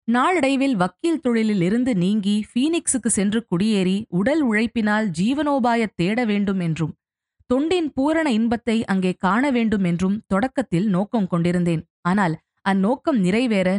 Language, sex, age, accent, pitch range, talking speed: Tamil, female, 20-39, native, 185-255 Hz, 120 wpm